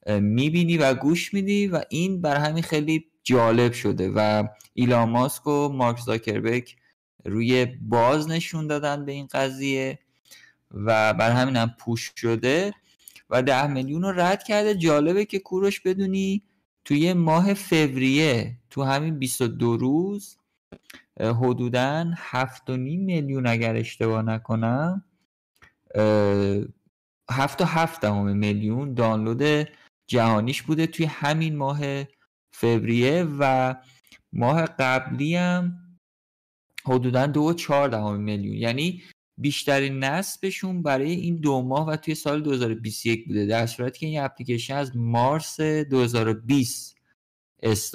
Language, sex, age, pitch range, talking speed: Persian, male, 50-69, 115-155 Hz, 110 wpm